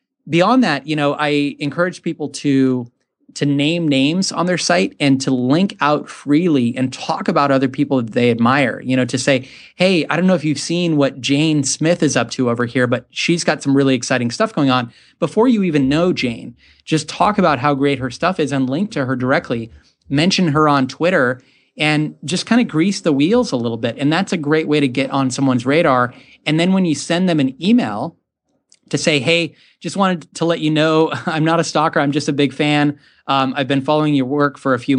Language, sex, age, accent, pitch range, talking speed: English, male, 30-49, American, 130-160 Hz, 225 wpm